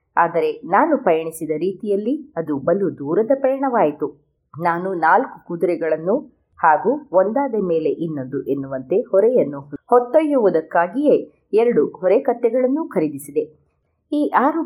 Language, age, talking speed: Kannada, 30-49, 100 wpm